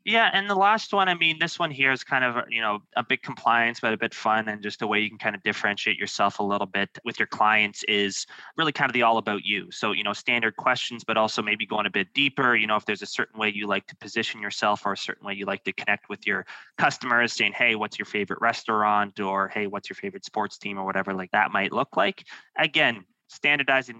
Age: 20-39